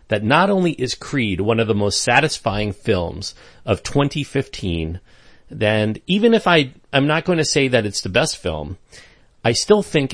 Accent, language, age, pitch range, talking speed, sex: American, English, 40-59, 95-130 Hz, 180 wpm, male